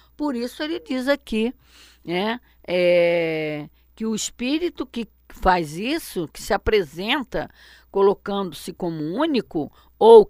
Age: 50-69